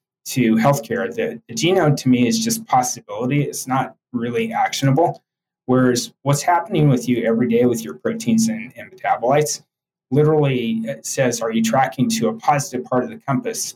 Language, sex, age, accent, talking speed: English, male, 20-39, American, 175 wpm